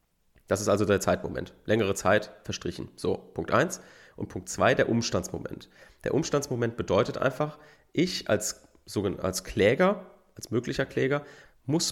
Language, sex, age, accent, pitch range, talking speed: German, male, 30-49, German, 95-125 Hz, 140 wpm